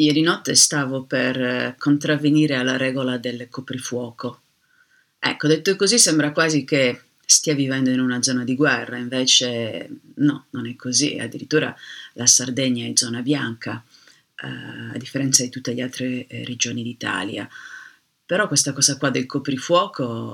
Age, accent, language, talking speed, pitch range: 40-59, native, Italian, 145 wpm, 130-160 Hz